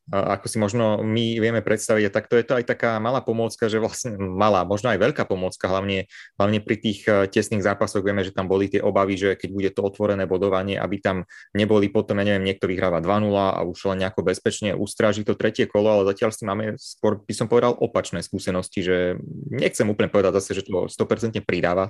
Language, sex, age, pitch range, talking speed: Slovak, male, 20-39, 95-110 Hz, 205 wpm